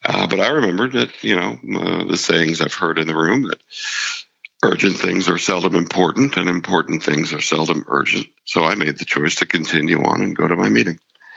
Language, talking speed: English, 210 wpm